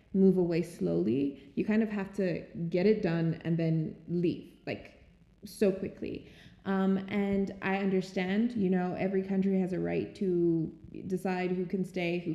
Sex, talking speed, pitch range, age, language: female, 165 wpm, 175-205 Hz, 20-39, English